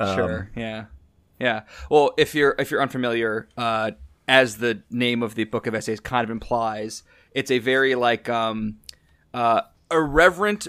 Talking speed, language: 155 wpm, English